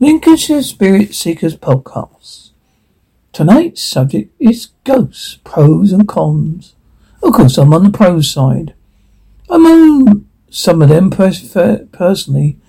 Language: English